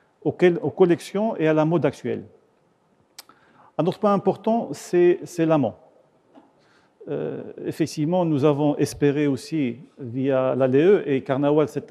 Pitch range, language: 135-170 Hz, Arabic